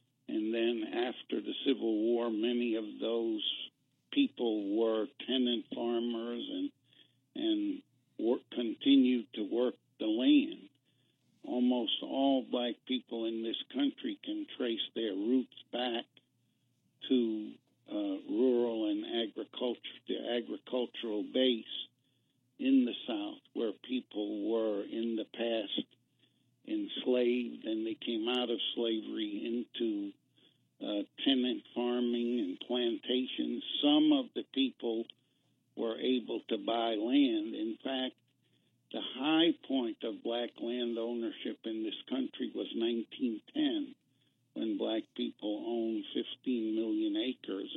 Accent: American